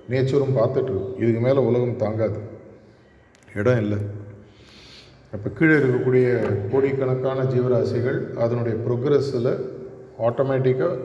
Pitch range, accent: 110-130 Hz, native